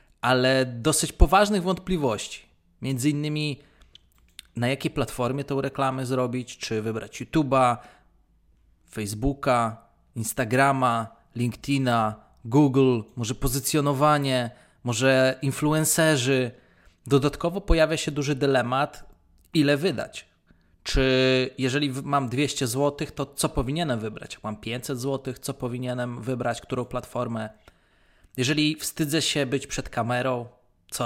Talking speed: 105 wpm